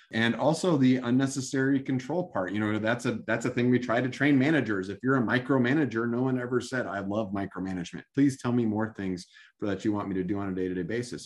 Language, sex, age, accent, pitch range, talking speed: English, male, 30-49, American, 100-125 Hz, 240 wpm